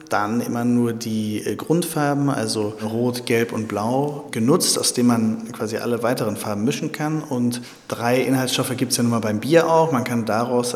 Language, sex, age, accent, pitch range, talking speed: German, male, 40-59, German, 110-135 Hz, 190 wpm